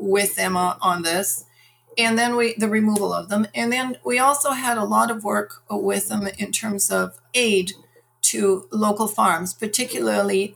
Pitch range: 185-220 Hz